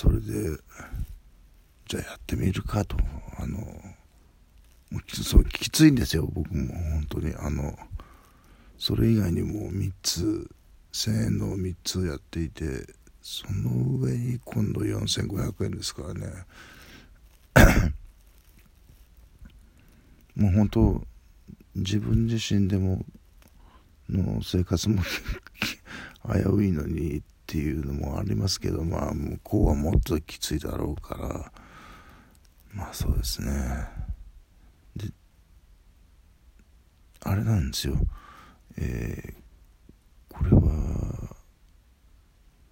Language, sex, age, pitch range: Japanese, male, 60-79, 75-95 Hz